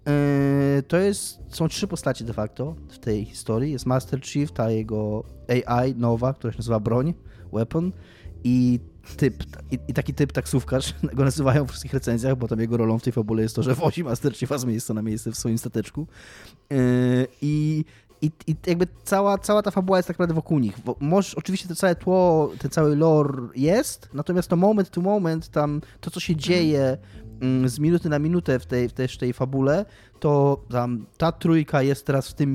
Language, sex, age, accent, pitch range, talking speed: Polish, male, 20-39, native, 120-160 Hz, 200 wpm